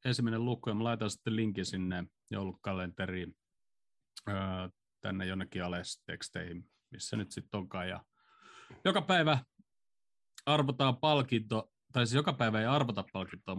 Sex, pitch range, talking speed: male, 100-125 Hz, 130 wpm